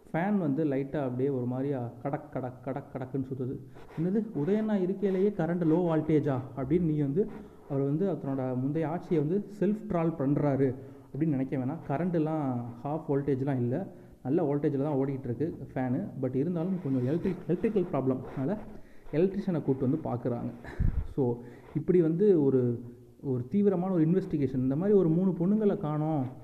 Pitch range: 135-170 Hz